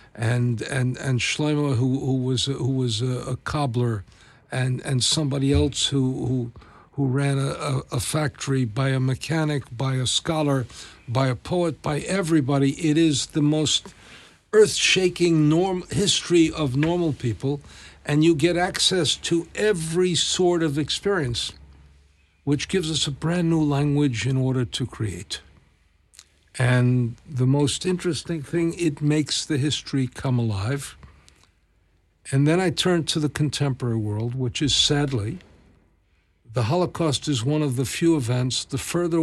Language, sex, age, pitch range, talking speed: Swedish, male, 60-79, 120-155 Hz, 150 wpm